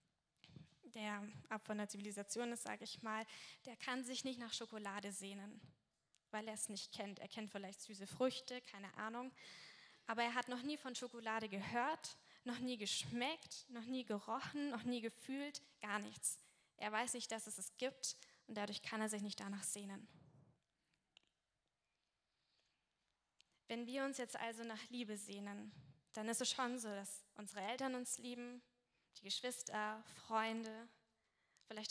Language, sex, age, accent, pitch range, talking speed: German, female, 10-29, German, 205-245 Hz, 160 wpm